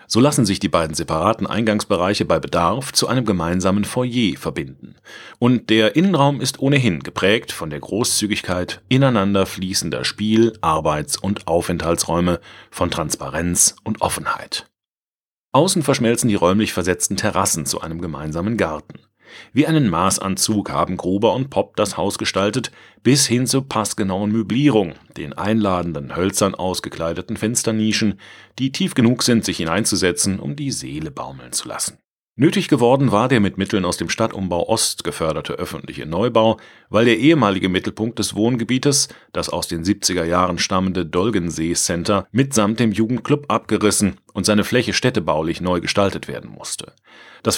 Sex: male